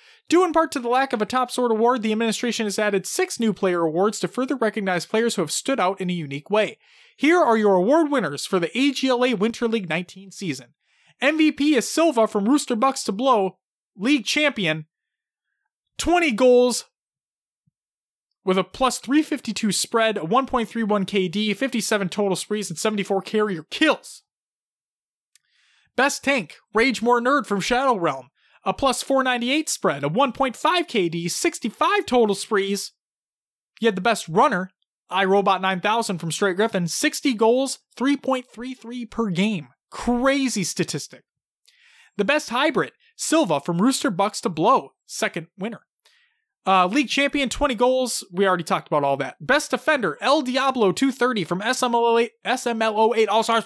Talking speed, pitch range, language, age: 150 wpm, 195-270 Hz, English, 20-39